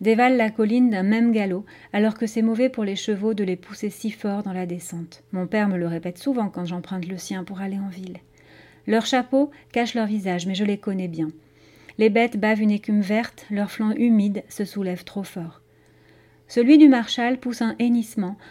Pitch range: 195-240 Hz